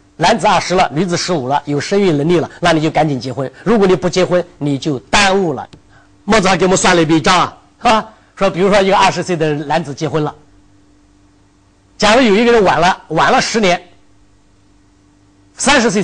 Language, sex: Chinese, male